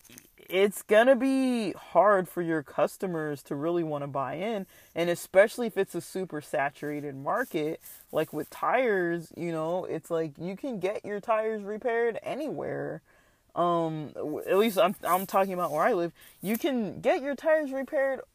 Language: English